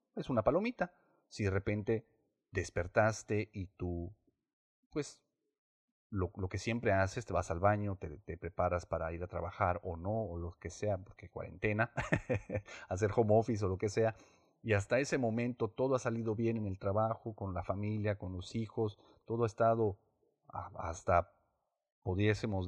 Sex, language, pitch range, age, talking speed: male, Spanish, 95-120 Hz, 40-59, 170 wpm